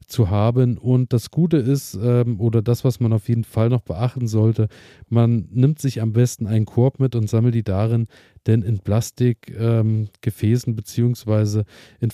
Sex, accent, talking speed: male, German, 175 wpm